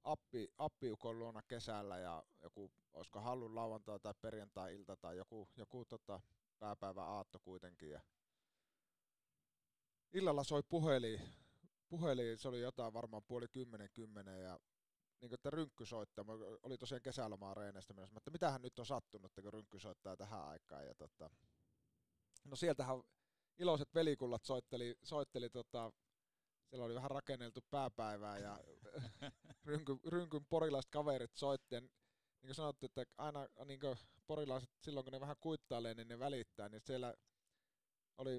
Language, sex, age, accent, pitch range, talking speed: Finnish, male, 30-49, native, 110-140 Hz, 130 wpm